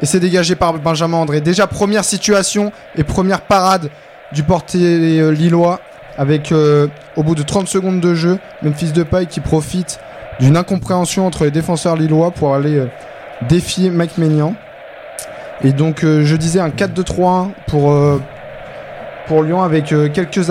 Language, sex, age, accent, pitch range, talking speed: French, male, 20-39, French, 145-170 Hz, 160 wpm